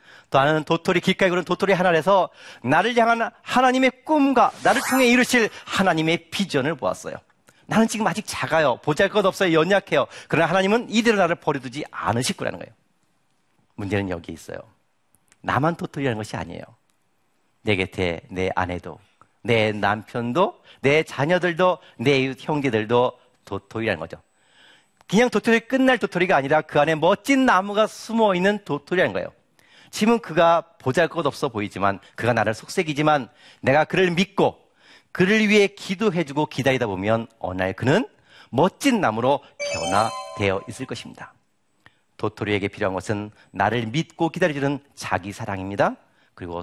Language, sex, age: Korean, male, 40-59